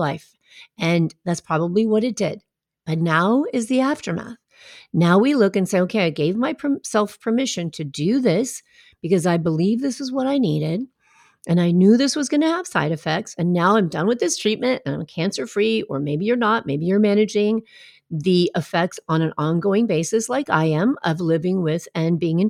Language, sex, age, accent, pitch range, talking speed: English, female, 40-59, American, 165-235 Hz, 200 wpm